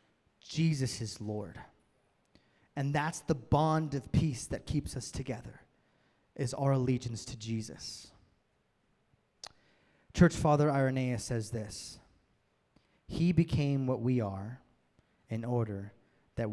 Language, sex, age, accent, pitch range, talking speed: English, male, 20-39, American, 115-145 Hz, 115 wpm